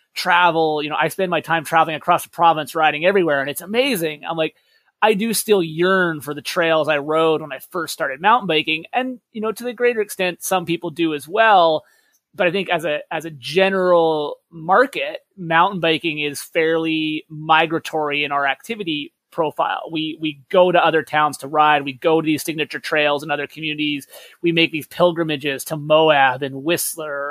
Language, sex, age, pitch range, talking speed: English, male, 30-49, 155-180 Hz, 195 wpm